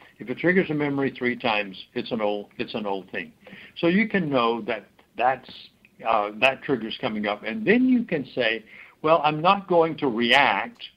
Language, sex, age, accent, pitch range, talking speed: English, male, 60-79, American, 115-145 Hz, 195 wpm